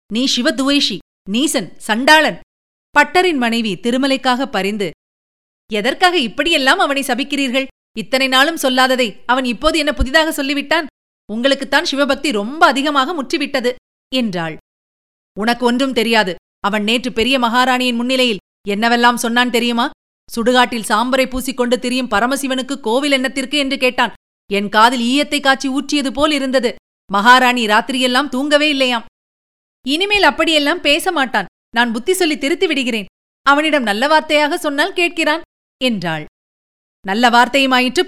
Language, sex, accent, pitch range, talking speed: Tamil, female, native, 230-285 Hz, 115 wpm